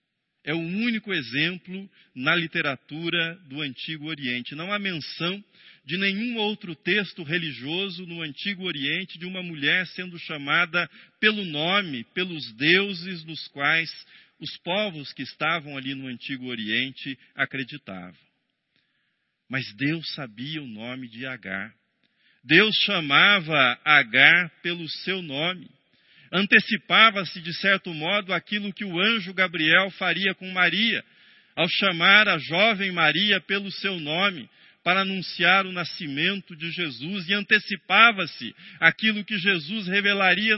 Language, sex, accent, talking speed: Portuguese, male, Brazilian, 125 wpm